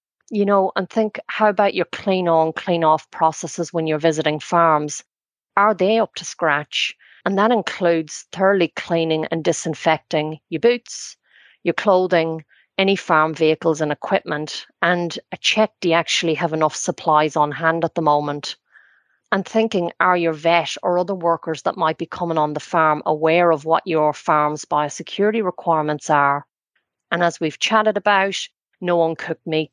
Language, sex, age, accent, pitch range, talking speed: English, female, 30-49, Irish, 155-190 Hz, 170 wpm